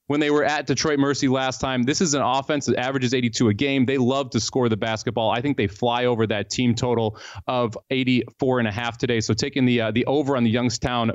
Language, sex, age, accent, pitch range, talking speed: English, male, 30-49, American, 125-160 Hz, 250 wpm